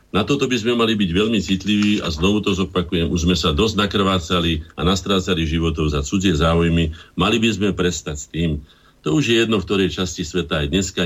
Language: Slovak